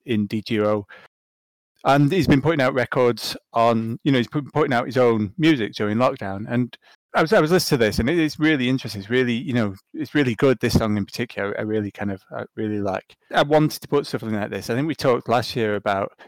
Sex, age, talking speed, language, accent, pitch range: male, 30-49, 240 wpm, English, British, 110-135 Hz